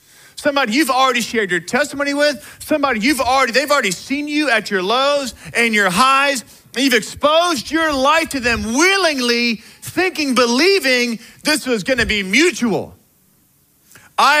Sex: male